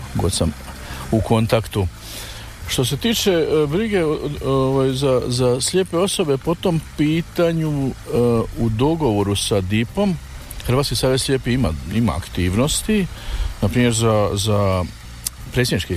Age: 50-69